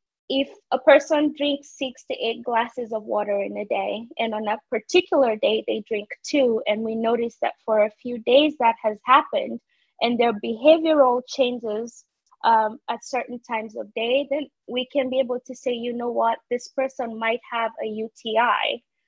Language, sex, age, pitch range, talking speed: English, female, 20-39, 225-275 Hz, 180 wpm